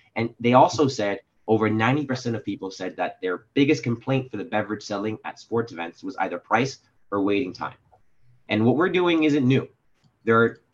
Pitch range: 105-130 Hz